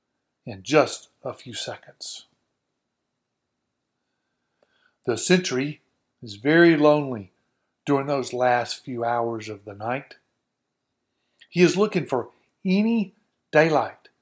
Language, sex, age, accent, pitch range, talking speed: English, male, 40-59, American, 125-175 Hz, 100 wpm